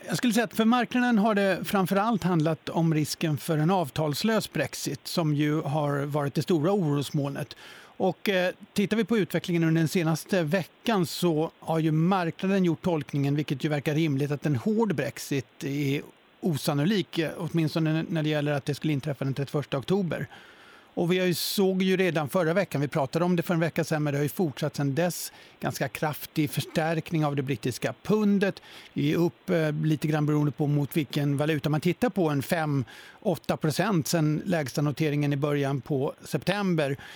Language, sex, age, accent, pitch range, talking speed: Swedish, male, 50-69, native, 150-185 Hz, 180 wpm